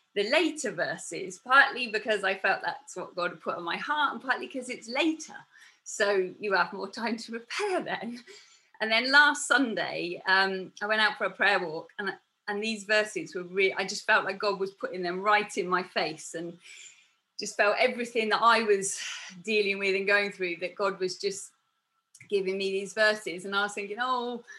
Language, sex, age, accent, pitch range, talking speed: English, female, 30-49, British, 190-235 Hz, 200 wpm